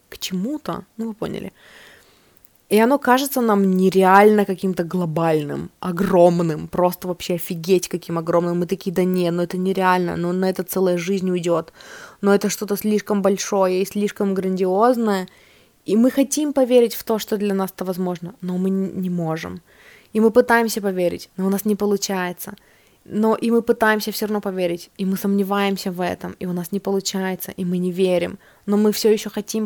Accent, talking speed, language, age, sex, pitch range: native, 180 wpm, Russian, 20-39, female, 180-210 Hz